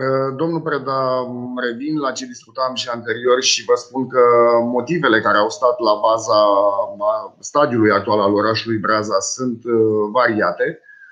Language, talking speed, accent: Romanian, 135 wpm, native